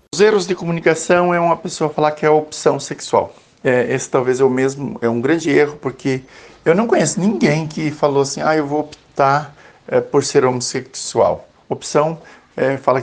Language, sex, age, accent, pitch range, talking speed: Portuguese, male, 60-79, Brazilian, 120-150 Hz, 190 wpm